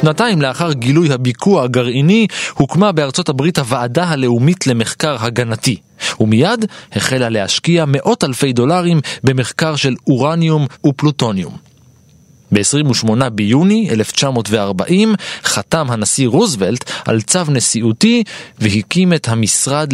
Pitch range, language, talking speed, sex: 120-170 Hz, Hebrew, 100 wpm, male